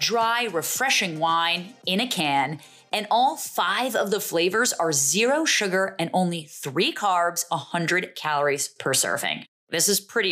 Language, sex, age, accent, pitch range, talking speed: English, female, 30-49, American, 165-230 Hz, 150 wpm